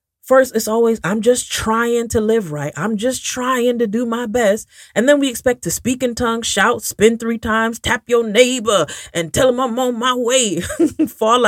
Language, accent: English, American